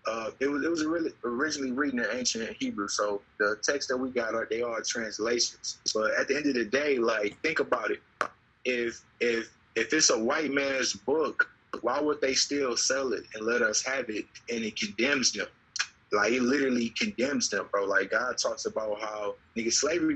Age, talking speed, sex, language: 20-39, 195 wpm, male, English